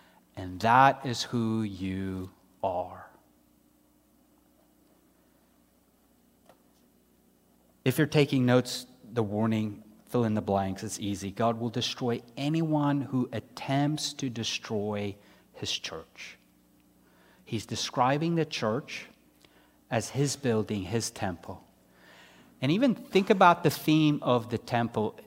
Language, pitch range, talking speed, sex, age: English, 110-180 Hz, 110 wpm, male, 30-49